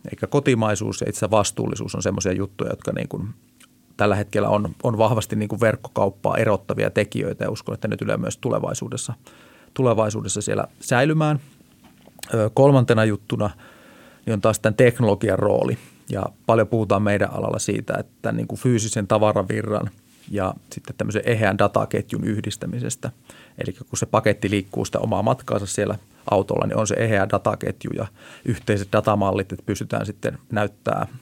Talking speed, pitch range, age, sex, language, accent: 145 wpm, 100-115 Hz, 30-49, male, Finnish, native